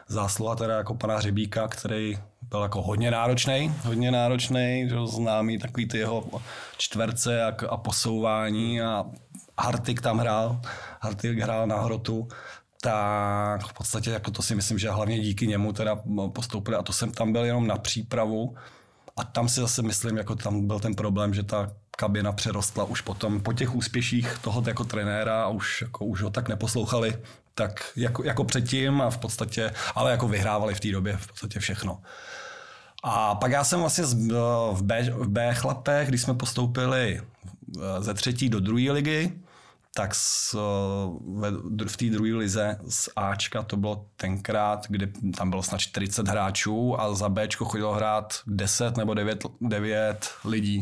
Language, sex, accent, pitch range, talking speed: Czech, male, native, 105-120 Hz, 165 wpm